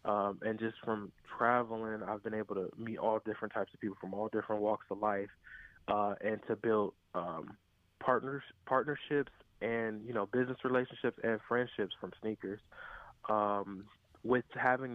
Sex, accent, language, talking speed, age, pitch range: male, American, English, 160 wpm, 20-39, 105-120 Hz